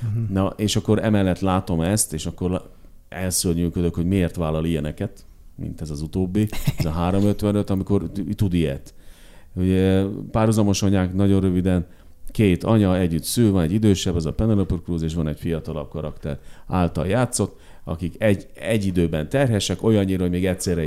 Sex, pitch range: male, 80-100 Hz